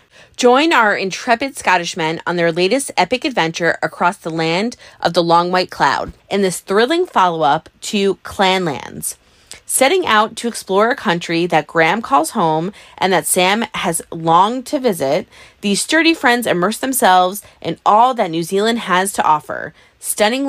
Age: 20-39